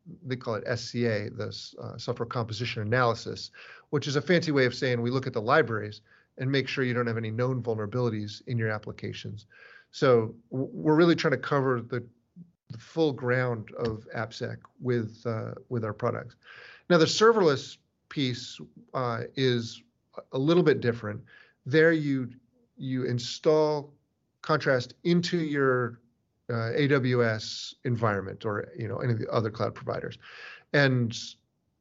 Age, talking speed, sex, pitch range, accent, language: 40-59, 155 wpm, male, 115-145 Hz, American, English